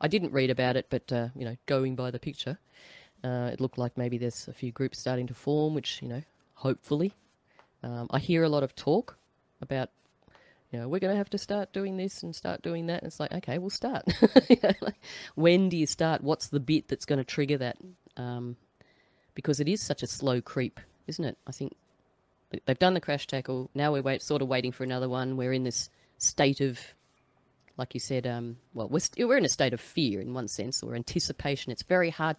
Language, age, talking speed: English, 30-49, 230 wpm